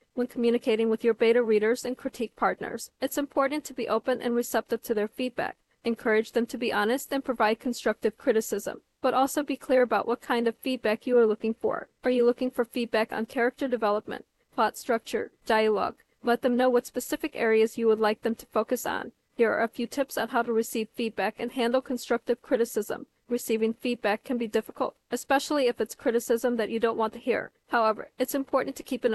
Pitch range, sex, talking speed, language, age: 225-255 Hz, female, 205 wpm, English, 40-59